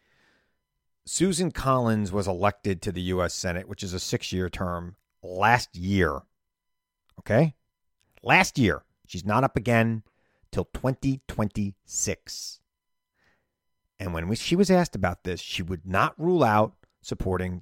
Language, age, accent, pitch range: English, 40-59, American, 90-120 Hz